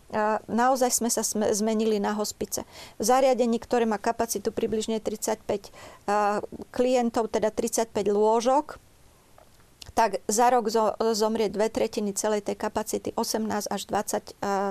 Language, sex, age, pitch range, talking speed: Slovak, female, 40-59, 215-250 Hz, 120 wpm